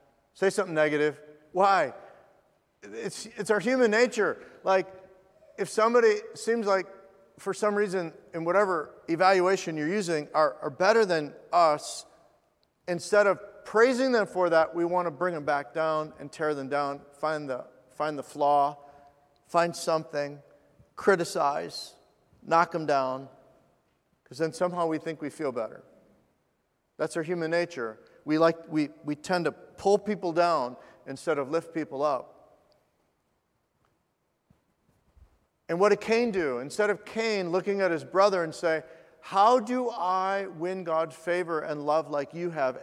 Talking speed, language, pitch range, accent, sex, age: 150 wpm, English, 150-195 Hz, American, male, 40-59